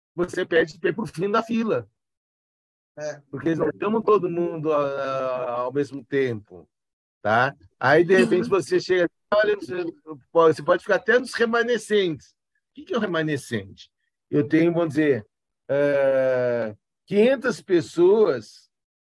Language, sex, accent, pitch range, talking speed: Portuguese, male, Brazilian, 125-180 Hz, 130 wpm